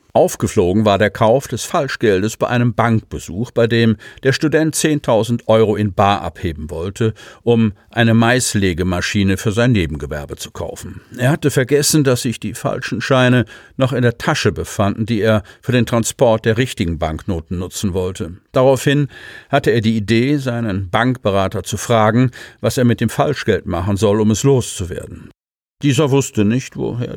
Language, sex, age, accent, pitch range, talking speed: German, male, 50-69, German, 100-120 Hz, 160 wpm